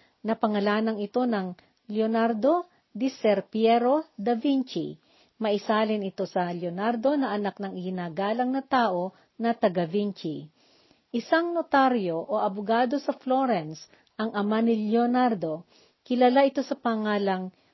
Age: 50-69